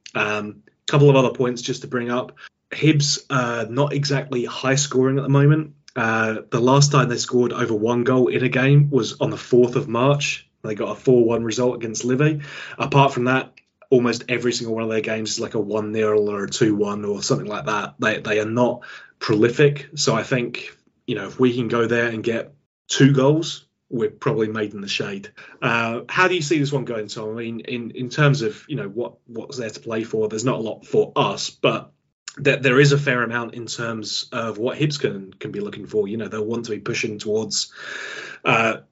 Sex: male